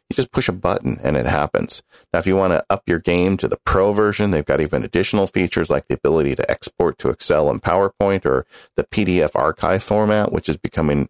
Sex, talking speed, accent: male, 225 wpm, American